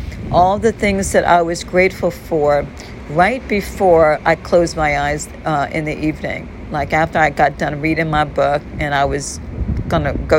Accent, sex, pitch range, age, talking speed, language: American, female, 155-215 Hz, 50-69, 185 wpm, English